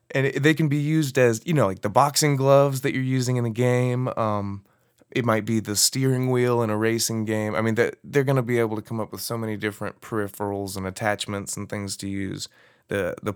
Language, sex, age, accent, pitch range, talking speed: English, male, 20-39, American, 100-120 Hz, 240 wpm